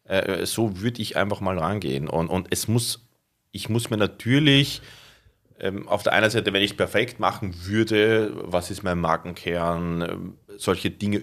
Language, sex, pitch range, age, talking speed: German, male, 95-110 Hz, 30-49, 160 wpm